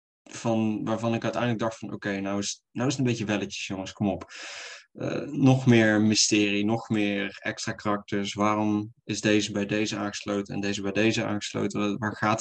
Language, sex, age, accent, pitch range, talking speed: Dutch, male, 20-39, Dutch, 100-120 Hz, 200 wpm